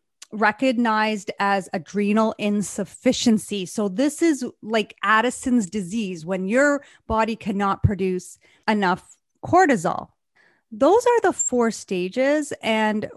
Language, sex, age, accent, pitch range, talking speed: English, female, 30-49, American, 195-255 Hz, 105 wpm